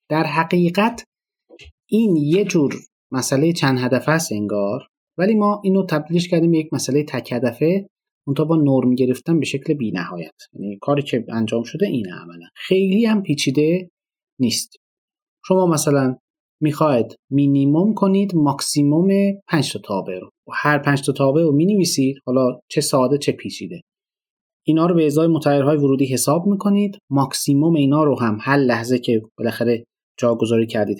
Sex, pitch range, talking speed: male, 130-185 Hz, 155 wpm